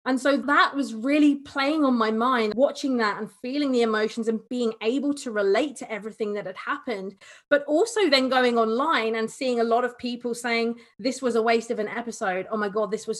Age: 20-39